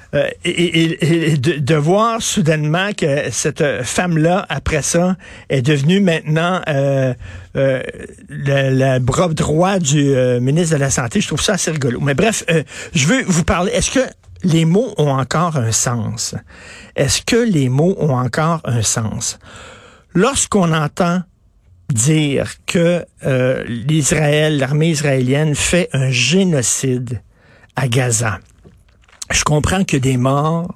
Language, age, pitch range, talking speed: French, 60-79, 130-180 Hz, 140 wpm